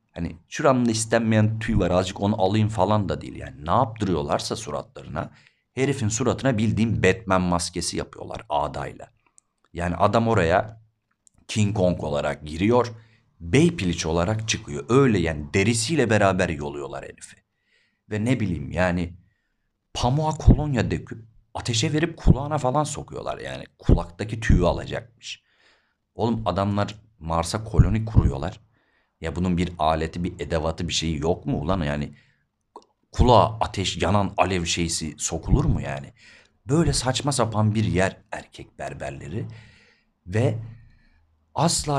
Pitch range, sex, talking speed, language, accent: 85-115 Hz, male, 125 wpm, Turkish, native